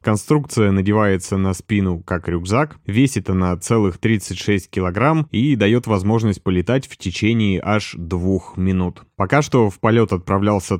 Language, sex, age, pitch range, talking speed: Russian, male, 30-49, 90-110 Hz, 140 wpm